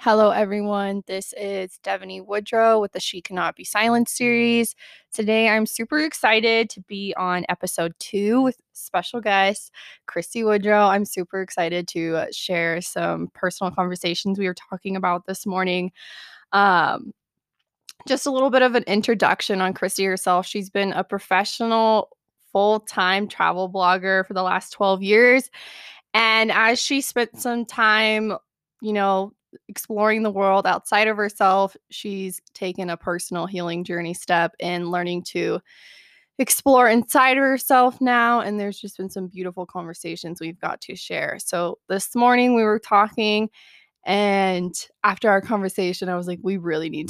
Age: 20-39